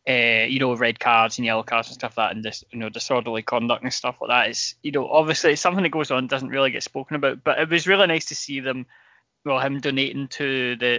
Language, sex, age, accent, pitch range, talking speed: English, male, 10-29, British, 120-135 Hz, 275 wpm